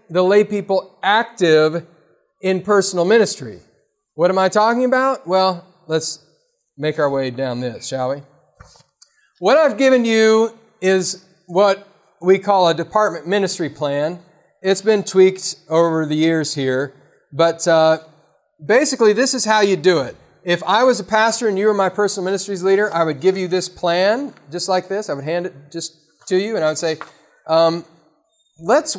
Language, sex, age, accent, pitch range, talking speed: English, male, 40-59, American, 165-210 Hz, 170 wpm